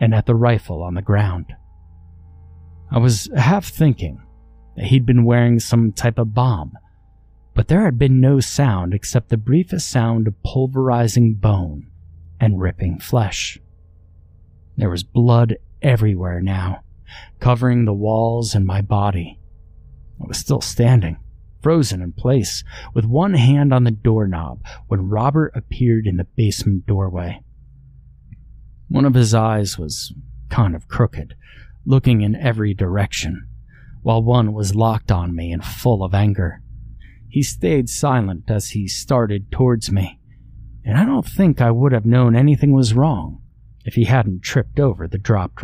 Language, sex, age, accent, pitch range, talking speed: English, male, 30-49, American, 95-120 Hz, 150 wpm